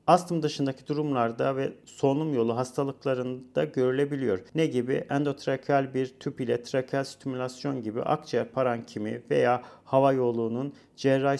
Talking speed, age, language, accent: 120 wpm, 40-59, Turkish, native